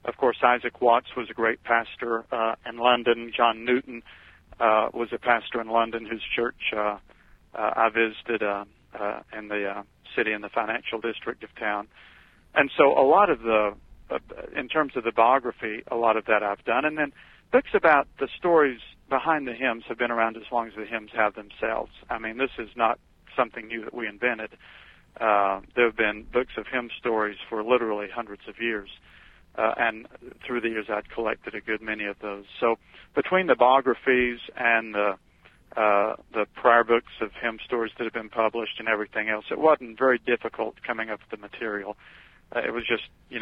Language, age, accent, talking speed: English, 50-69, American, 195 wpm